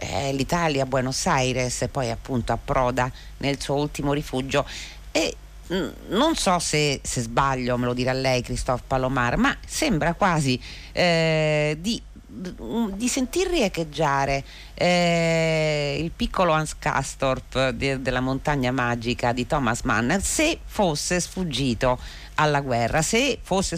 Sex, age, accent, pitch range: female, 40-59, native, 130-175 Hz